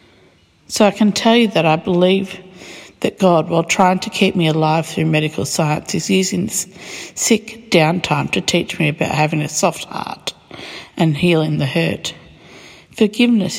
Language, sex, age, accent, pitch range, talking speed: English, female, 60-79, Australian, 155-185 Hz, 160 wpm